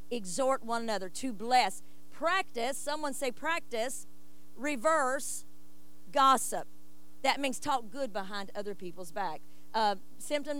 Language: English